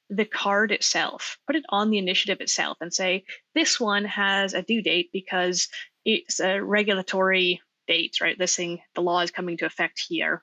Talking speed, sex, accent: 185 wpm, female, American